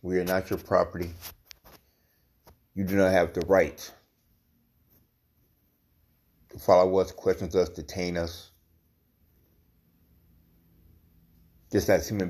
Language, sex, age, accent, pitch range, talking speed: English, male, 30-49, American, 85-100 Hz, 100 wpm